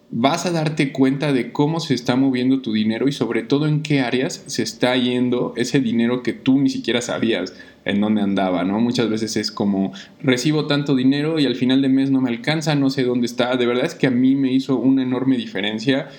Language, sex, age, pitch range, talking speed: Spanish, male, 20-39, 115-135 Hz, 225 wpm